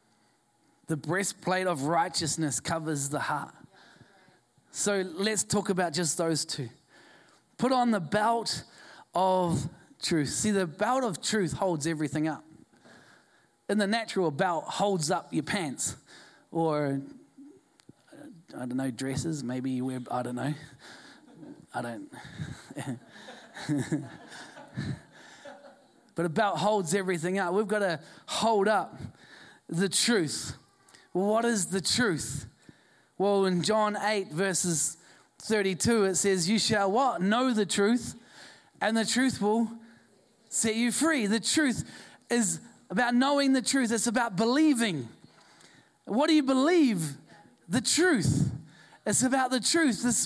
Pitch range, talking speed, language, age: 170-250 Hz, 130 wpm, English, 20-39